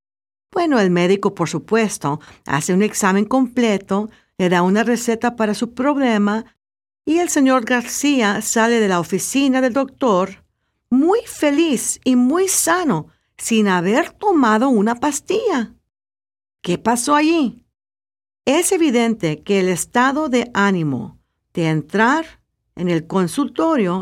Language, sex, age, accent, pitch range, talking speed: Spanish, female, 50-69, American, 180-260 Hz, 125 wpm